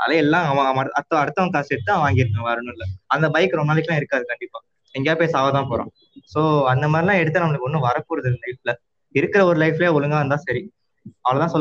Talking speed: 180 wpm